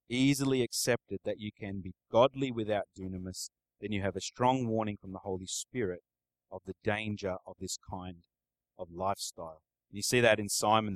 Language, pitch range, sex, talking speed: English, 90-130 Hz, male, 175 wpm